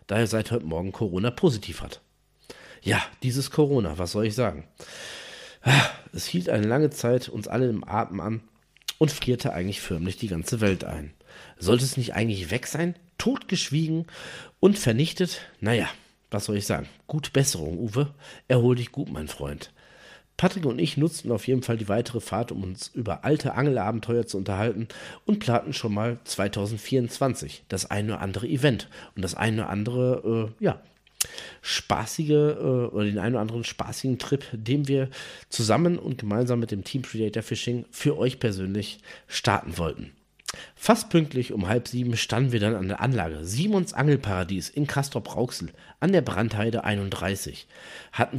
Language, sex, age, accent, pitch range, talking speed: German, male, 40-59, German, 105-140 Hz, 165 wpm